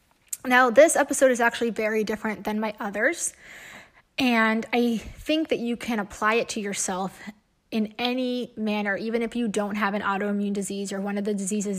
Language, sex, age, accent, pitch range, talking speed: English, female, 20-39, American, 200-235 Hz, 185 wpm